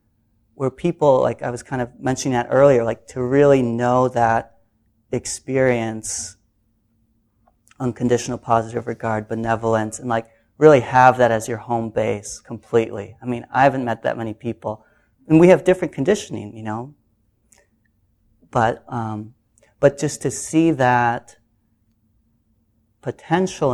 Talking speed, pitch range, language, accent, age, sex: 135 wpm, 110-135 Hz, English, American, 30-49, male